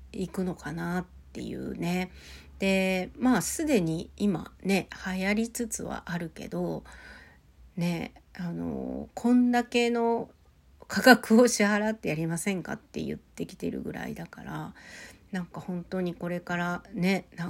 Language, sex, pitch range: Japanese, female, 165-200 Hz